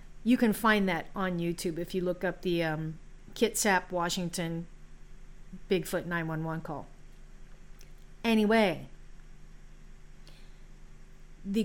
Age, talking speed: 40-59, 100 wpm